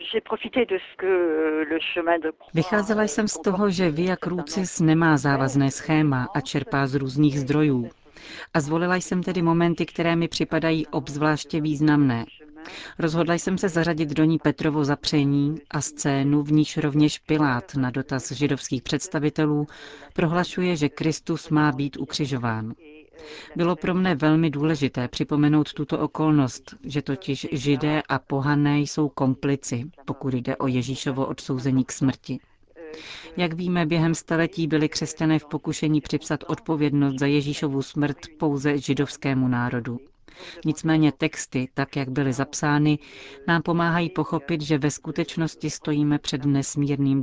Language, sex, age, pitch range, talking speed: Czech, female, 40-59, 140-160 Hz, 130 wpm